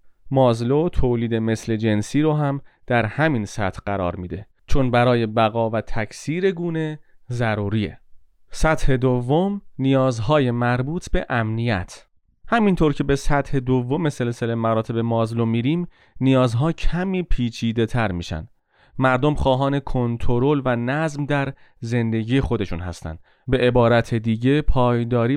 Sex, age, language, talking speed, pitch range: male, 30-49, Persian, 120 wpm, 110-140 Hz